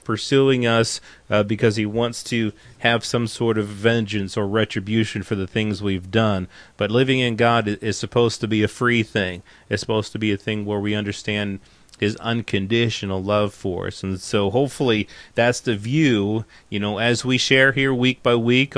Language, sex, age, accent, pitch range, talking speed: English, male, 30-49, American, 105-120 Hz, 190 wpm